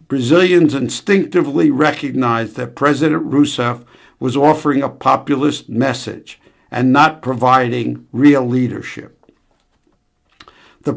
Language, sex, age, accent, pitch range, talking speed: English, male, 60-79, American, 125-150 Hz, 95 wpm